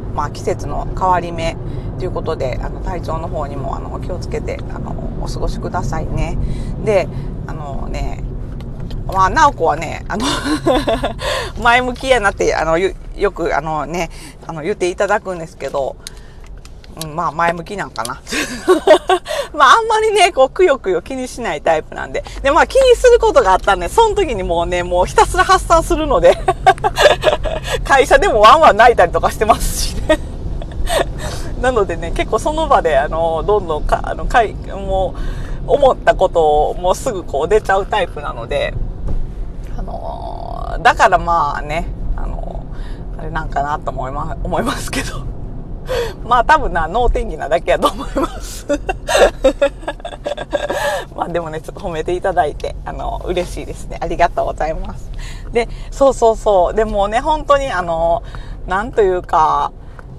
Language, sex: Japanese, female